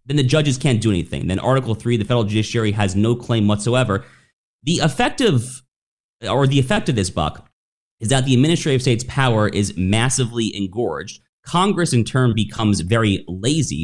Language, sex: English, male